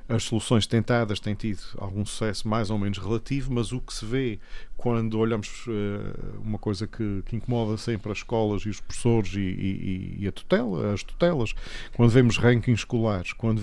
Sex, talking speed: male, 185 wpm